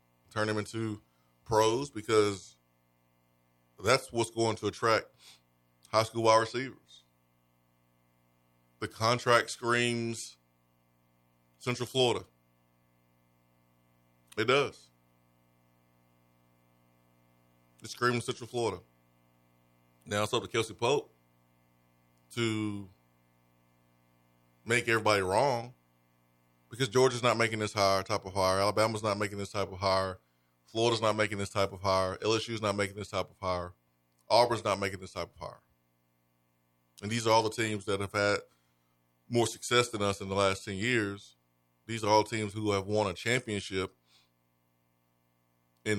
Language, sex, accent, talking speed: English, male, American, 130 wpm